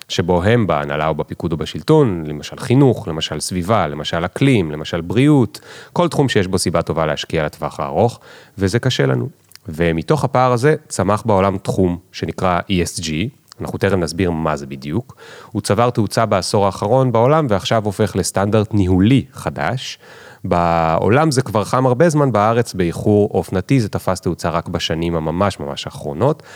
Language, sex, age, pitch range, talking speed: Hebrew, male, 30-49, 85-125 Hz, 155 wpm